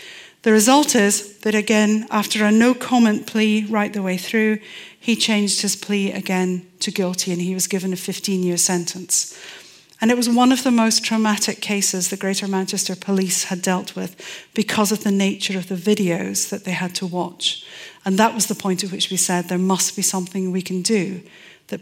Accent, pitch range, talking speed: British, 180-215 Hz, 200 wpm